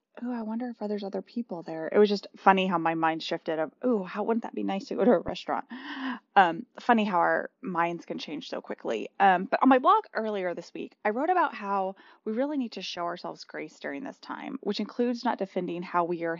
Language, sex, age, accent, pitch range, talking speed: English, female, 20-39, American, 175-255 Hz, 240 wpm